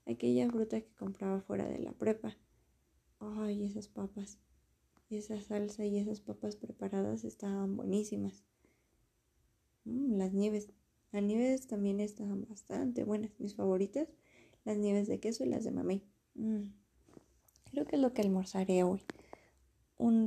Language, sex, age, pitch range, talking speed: Spanish, female, 20-39, 195-225 Hz, 140 wpm